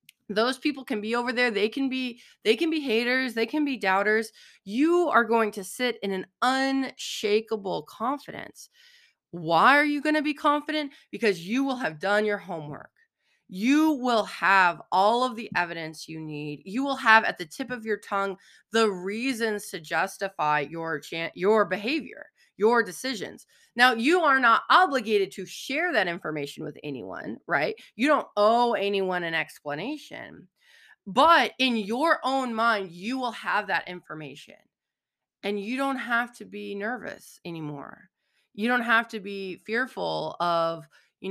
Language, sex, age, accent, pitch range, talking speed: English, female, 30-49, American, 185-255 Hz, 165 wpm